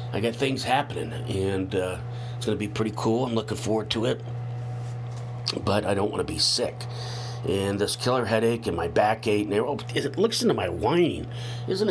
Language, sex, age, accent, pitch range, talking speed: English, male, 40-59, American, 105-125 Hz, 205 wpm